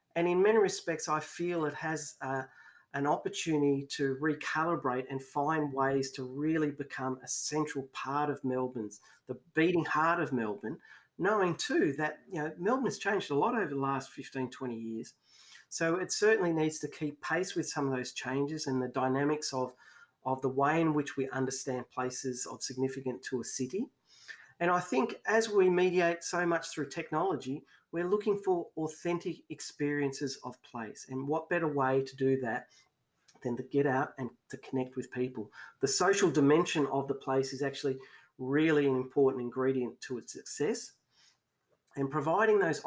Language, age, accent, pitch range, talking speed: English, 40-59, Australian, 130-160 Hz, 175 wpm